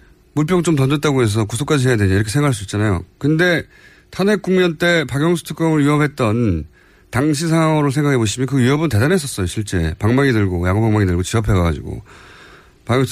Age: 30-49